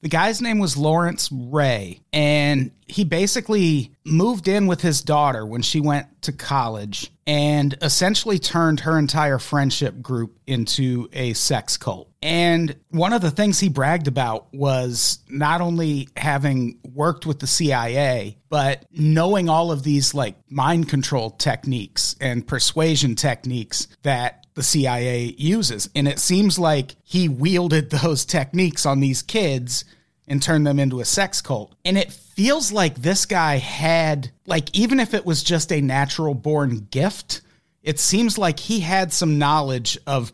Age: 30-49